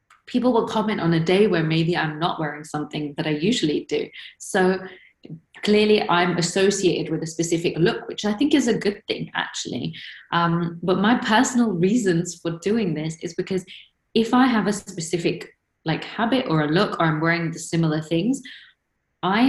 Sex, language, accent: female, English, British